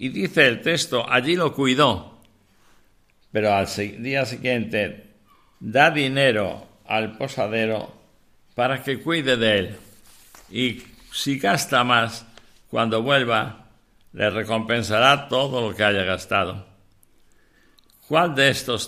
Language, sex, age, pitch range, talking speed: Spanish, male, 60-79, 105-125 Hz, 115 wpm